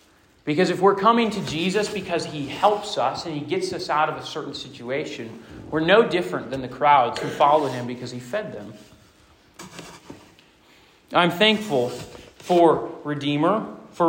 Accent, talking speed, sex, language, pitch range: American, 160 wpm, male, English, 145-195 Hz